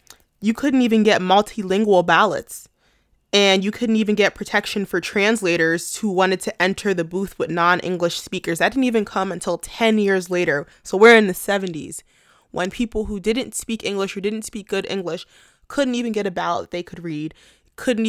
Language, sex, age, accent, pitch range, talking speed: English, female, 20-39, American, 170-210 Hz, 185 wpm